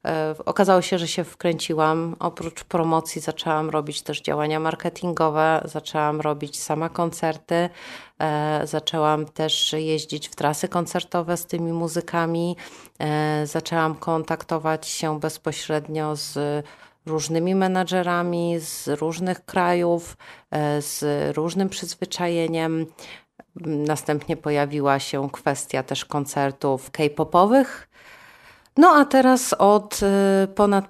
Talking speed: 95 wpm